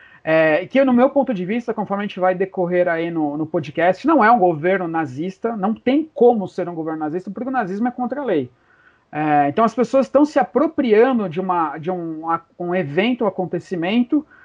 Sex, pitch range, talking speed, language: male, 185-250 Hz, 195 wpm, Portuguese